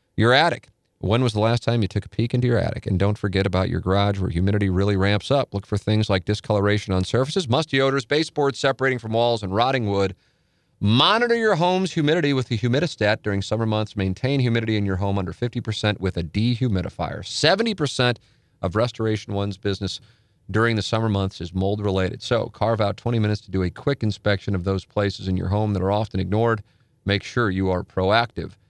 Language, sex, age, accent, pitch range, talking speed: English, male, 40-59, American, 95-120 Hz, 205 wpm